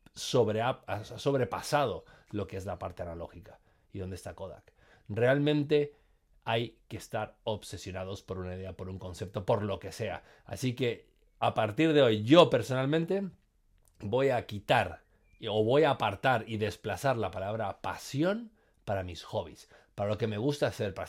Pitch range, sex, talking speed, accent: 95-125 Hz, male, 160 wpm, Spanish